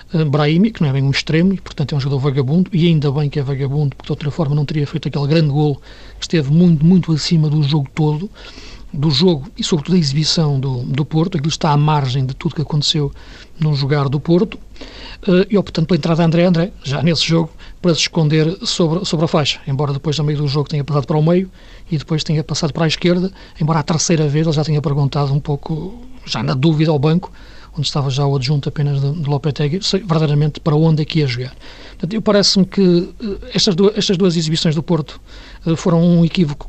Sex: male